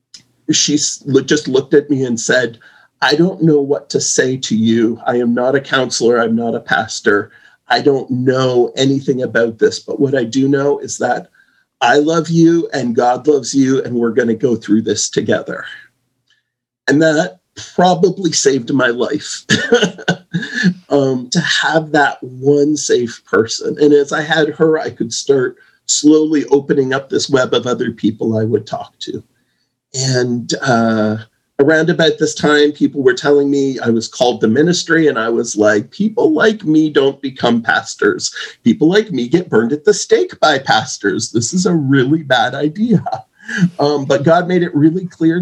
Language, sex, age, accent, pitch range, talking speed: English, male, 50-69, American, 130-170 Hz, 175 wpm